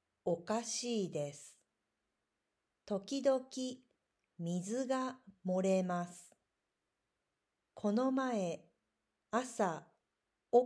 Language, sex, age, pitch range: Japanese, female, 40-59, 170-245 Hz